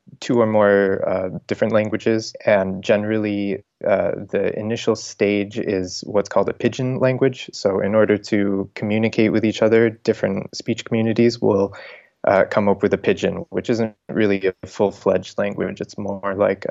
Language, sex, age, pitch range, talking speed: English, male, 20-39, 95-110 Hz, 165 wpm